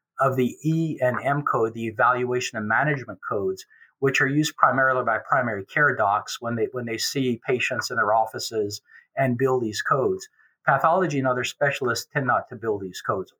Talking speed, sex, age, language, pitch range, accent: 190 wpm, male, 50-69, English, 125-150 Hz, American